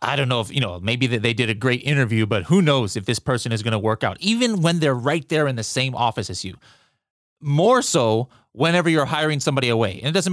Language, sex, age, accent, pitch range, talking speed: English, male, 30-49, American, 120-155 Hz, 250 wpm